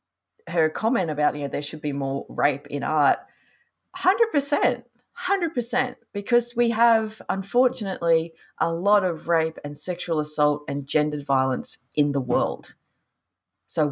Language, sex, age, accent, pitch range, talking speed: English, female, 30-49, Australian, 140-215 Hz, 140 wpm